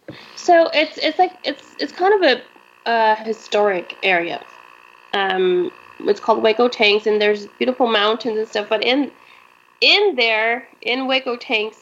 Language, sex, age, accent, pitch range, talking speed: English, female, 20-39, American, 200-240 Hz, 150 wpm